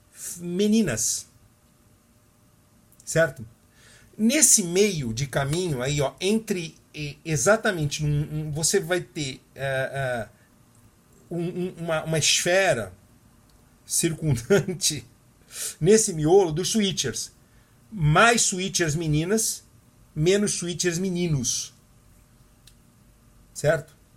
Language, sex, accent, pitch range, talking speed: Portuguese, male, Brazilian, 120-180 Hz, 85 wpm